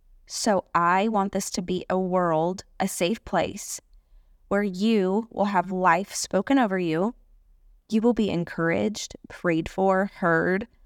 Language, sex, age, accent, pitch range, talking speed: English, female, 20-39, American, 165-205 Hz, 145 wpm